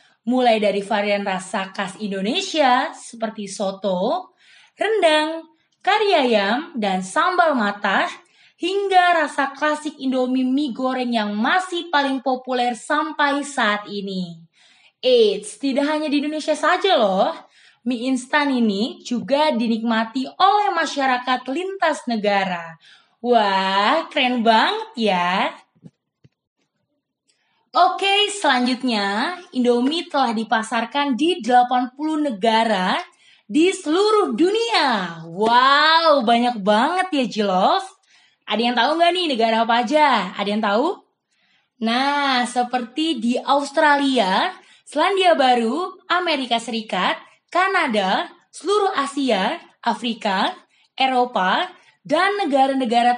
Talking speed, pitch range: 100 wpm, 225-320 Hz